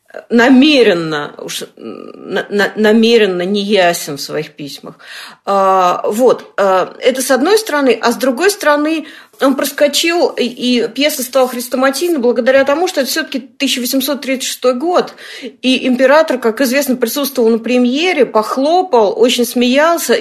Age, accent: 40-59, native